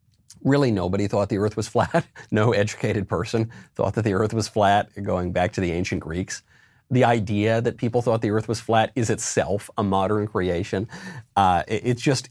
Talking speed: 195 wpm